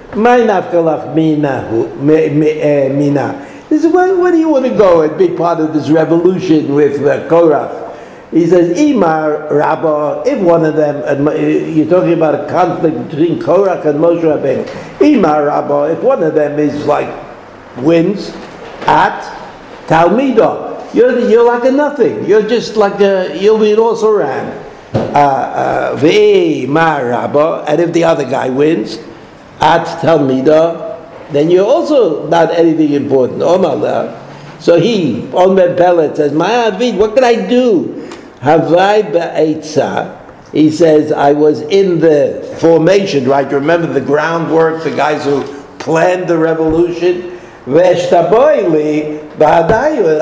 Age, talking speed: 60-79, 125 wpm